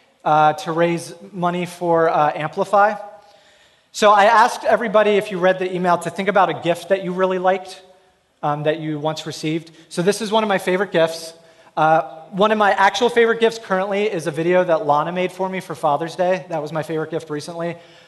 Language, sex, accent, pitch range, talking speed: English, male, American, 155-195 Hz, 210 wpm